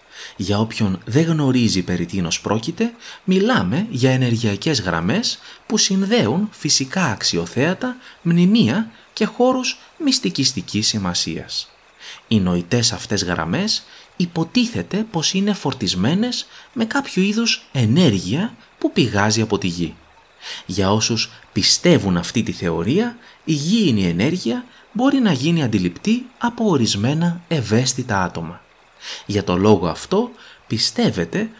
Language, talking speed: Greek, 110 wpm